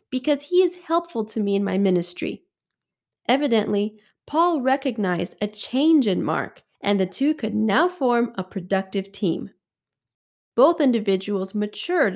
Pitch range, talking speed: 190-260 Hz, 140 wpm